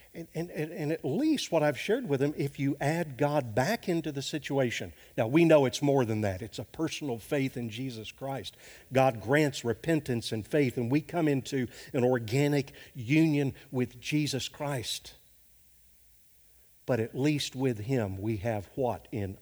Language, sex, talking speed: English, male, 175 wpm